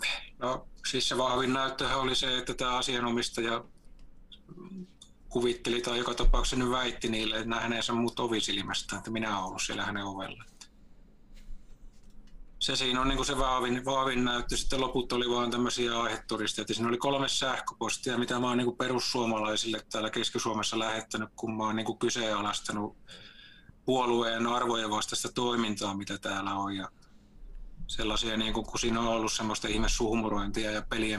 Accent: native